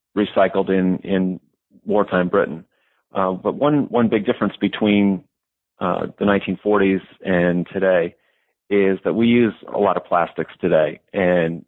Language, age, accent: English, 40-59, American